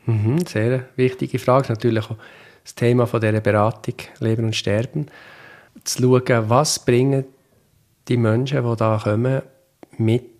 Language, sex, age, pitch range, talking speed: German, male, 50-69, 110-125 Hz, 140 wpm